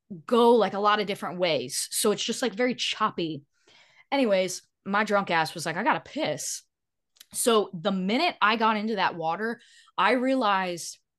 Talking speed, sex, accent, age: 170 wpm, female, American, 20-39